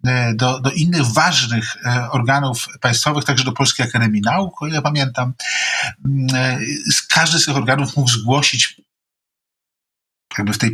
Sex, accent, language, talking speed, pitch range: male, native, Polish, 130 wpm, 115-140 Hz